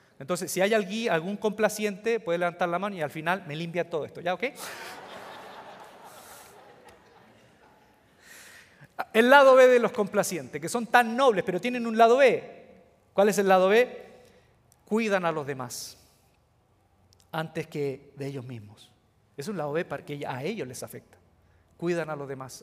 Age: 40-59